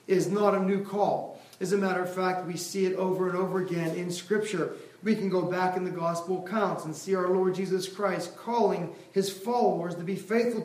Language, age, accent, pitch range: English, 40-59, American, 190-230 Hz